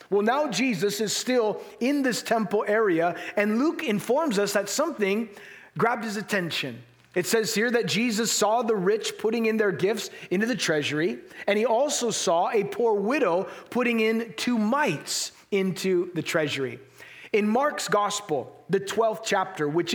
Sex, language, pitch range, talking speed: male, English, 190-235 Hz, 160 wpm